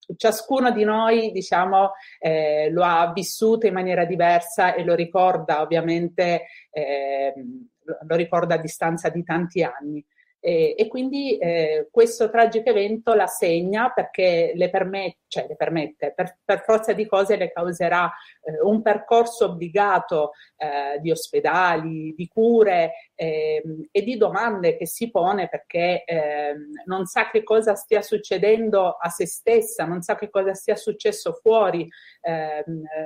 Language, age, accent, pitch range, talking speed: Italian, 40-59, native, 165-215 Hz, 145 wpm